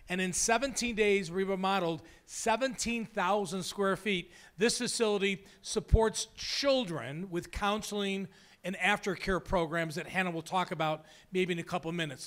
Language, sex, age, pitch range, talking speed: English, male, 40-59, 170-215 Hz, 135 wpm